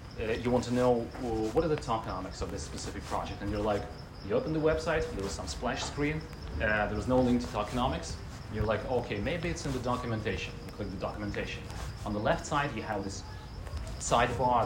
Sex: male